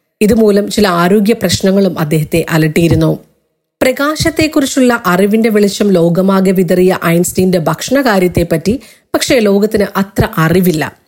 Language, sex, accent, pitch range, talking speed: Malayalam, female, native, 180-220 Hz, 95 wpm